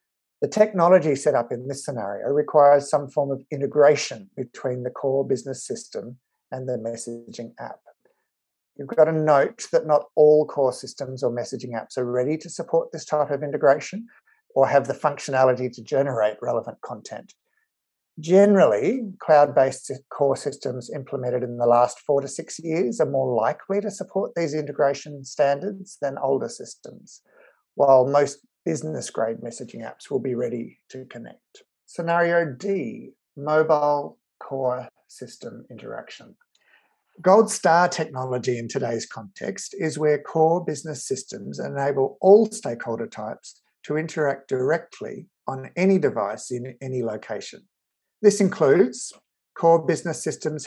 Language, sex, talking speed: English, male, 140 wpm